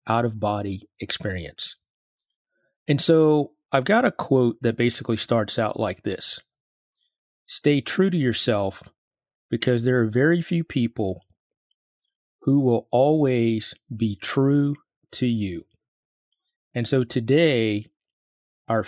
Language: English